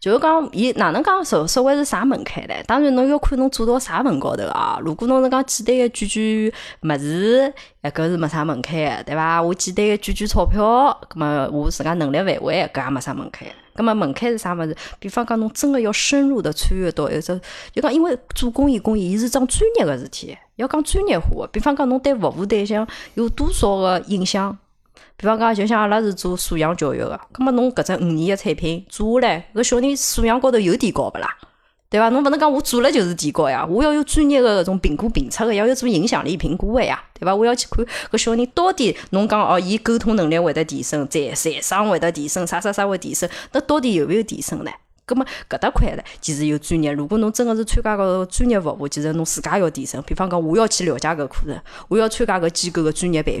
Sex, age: female, 20-39